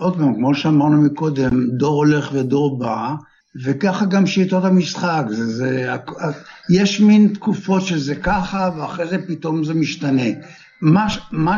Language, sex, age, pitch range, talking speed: Hebrew, male, 60-79, 145-190 Hz, 140 wpm